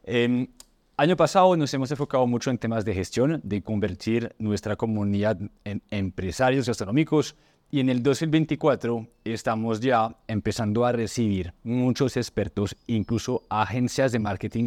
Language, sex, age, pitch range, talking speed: Spanish, male, 30-49, 105-130 Hz, 135 wpm